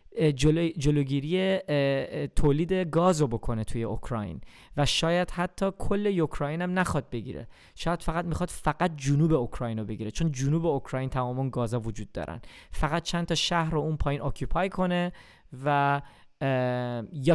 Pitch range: 135-170 Hz